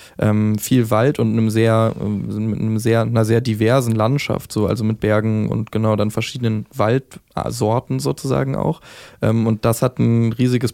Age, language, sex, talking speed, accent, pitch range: 20-39, German, male, 170 wpm, German, 105-120 Hz